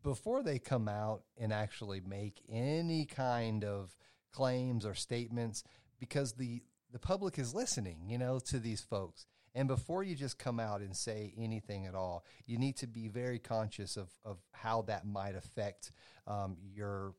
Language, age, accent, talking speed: English, 30-49, American, 170 wpm